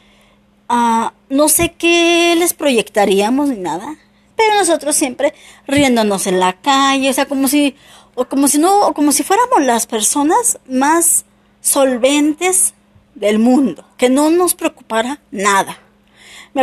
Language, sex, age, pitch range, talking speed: Spanish, female, 20-39, 210-295 Hz, 140 wpm